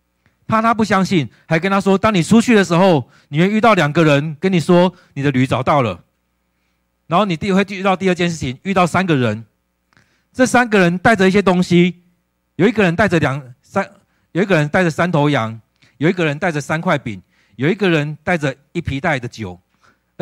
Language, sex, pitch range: Chinese, male, 115-190 Hz